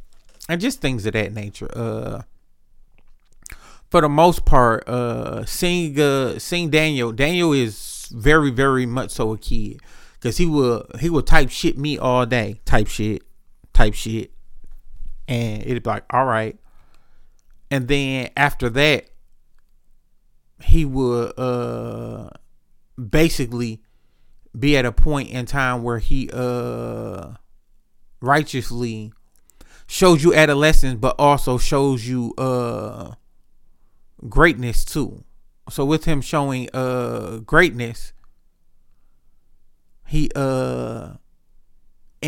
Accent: American